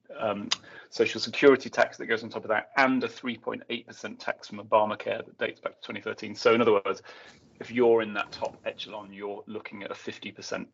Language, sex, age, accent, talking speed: English, male, 30-49, British, 230 wpm